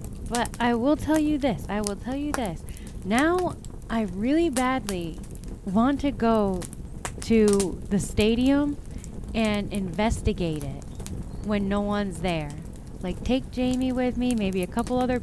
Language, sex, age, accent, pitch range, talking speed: English, female, 20-39, American, 185-240 Hz, 145 wpm